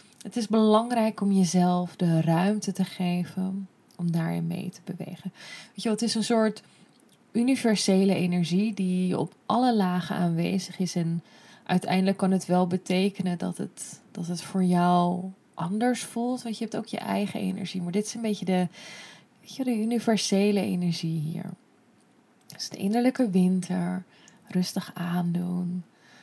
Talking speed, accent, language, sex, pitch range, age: 160 wpm, Dutch, Dutch, female, 180-210 Hz, 20-39